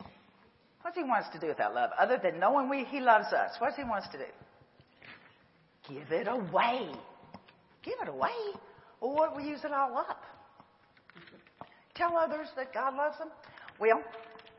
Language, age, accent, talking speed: English, 50-69, American, 175 wpm